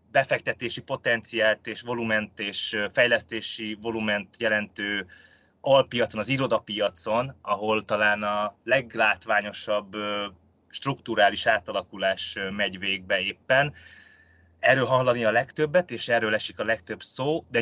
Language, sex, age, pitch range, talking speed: Hungarian, male, 20-39, 105-125 Hz, 105 wpm